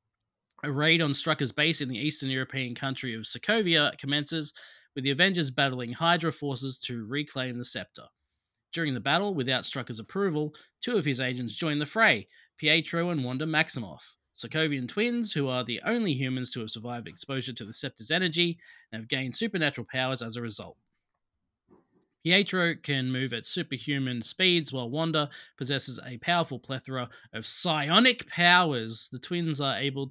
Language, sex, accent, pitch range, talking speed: English, male, Australian, 125-165 Hz, 165 wpm